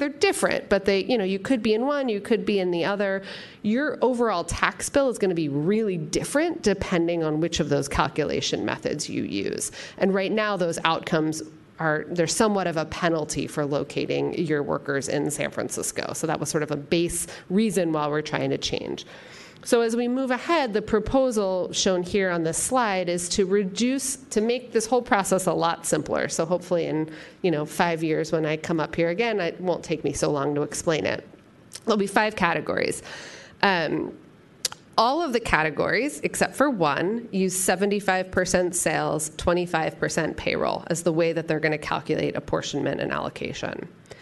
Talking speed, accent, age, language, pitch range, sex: 190 wpm, American, 40-59, English, 160-215 Hz, female